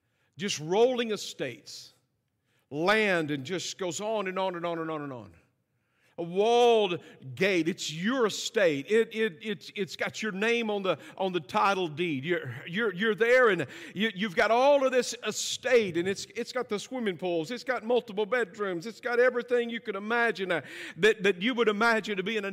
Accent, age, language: American, 50-69, English